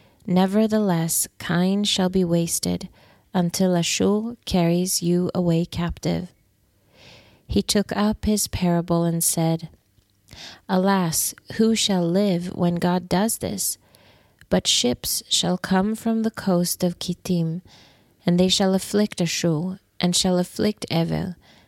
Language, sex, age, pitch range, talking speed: English, female, 30-49, 165-190 Hz, 120 wpm